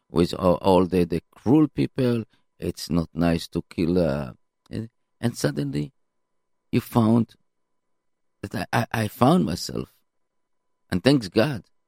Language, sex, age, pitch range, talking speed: English, male, 50-69, 90-120 Hz, 130 wpm